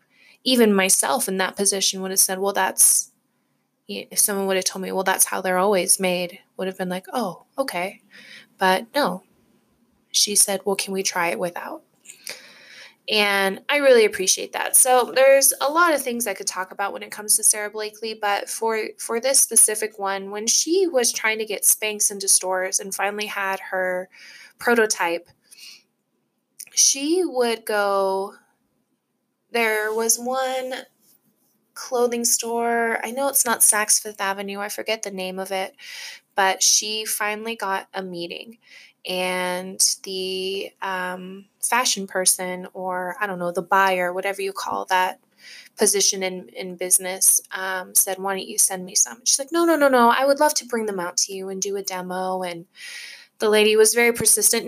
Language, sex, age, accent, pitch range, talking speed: English, female, 20-39, American, 190-235 Hz, 175 wpm